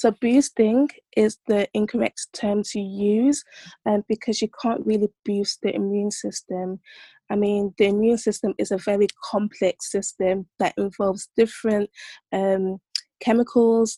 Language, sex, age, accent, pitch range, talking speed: English, female, 20-39, British, 200-225 Hz, 140 wpm